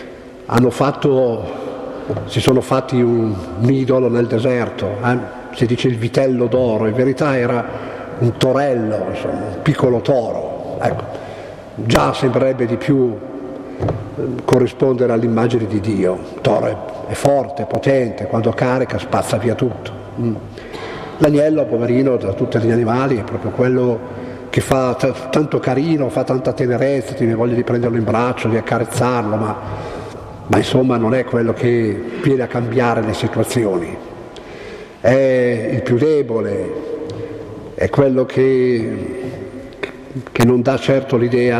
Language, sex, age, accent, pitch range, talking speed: Italian, male, 50-69, native, 115-135 Hz, 140 wpm